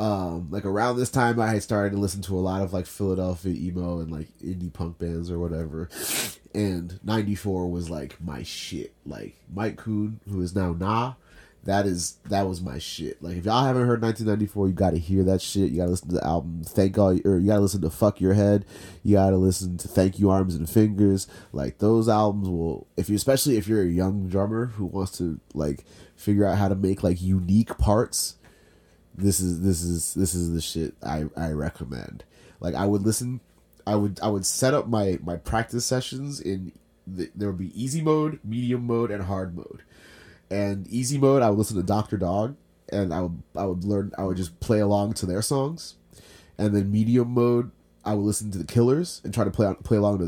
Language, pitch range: English, 90-105 Hz